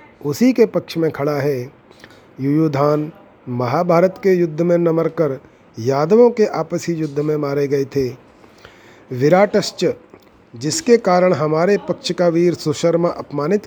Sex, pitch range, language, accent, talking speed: male, 150-180 Hz, Hindi, native, 130 wpm